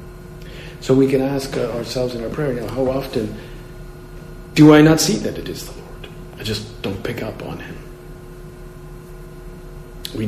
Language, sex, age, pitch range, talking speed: English, male, 50-69, 115-150 Hz, 170 wpm